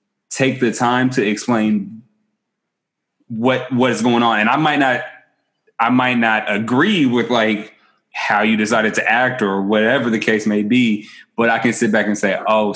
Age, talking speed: 20-39, 185 wpm